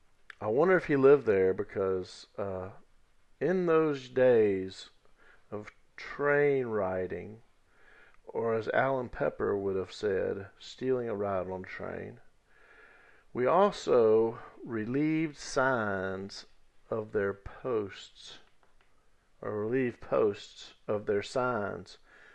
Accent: American